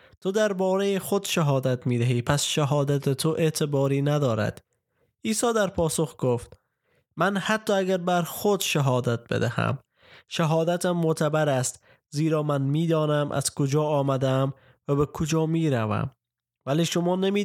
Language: Persian